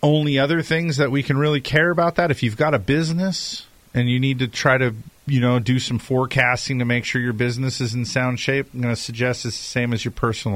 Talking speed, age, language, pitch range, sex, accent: 255 wpm, 40-59, English, 105-130 Hz, male, American